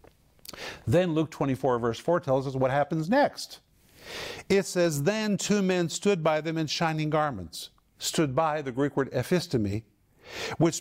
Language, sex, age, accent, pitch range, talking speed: English, male, 50-69, American, 135-170 Hz, 155 wpm